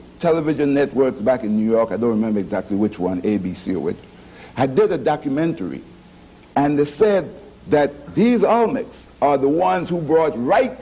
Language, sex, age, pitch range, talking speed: English, male, 60-79, 120-185 Hz, 170 wpm